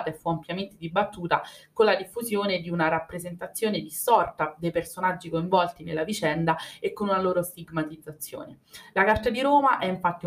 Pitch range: 160-200 Hz